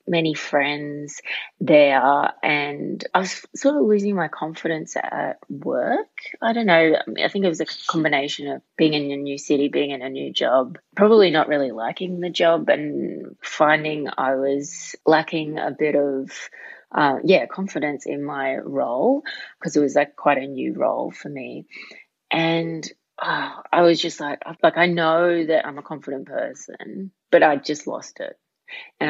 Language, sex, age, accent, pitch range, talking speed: English, female, 30-49, Australian, 145-175 Hz, 170 wpm